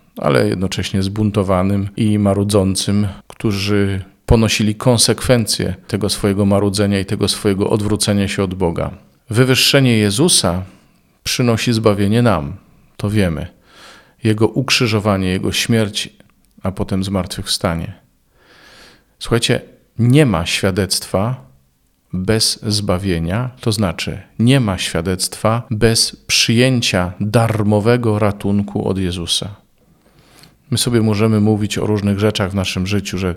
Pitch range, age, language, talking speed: 95-110 Hz, 40-59, Polish, 110 wpm